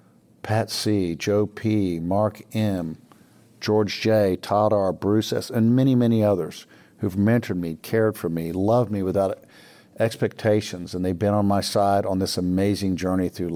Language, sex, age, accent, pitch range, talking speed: English, male, 50-69, American, 95-110 Hz, 165 wpm